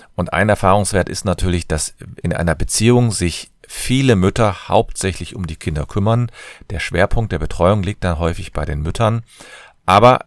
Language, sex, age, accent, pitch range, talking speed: German, male, 40-59, German, 85-105 Hz, 165 wpm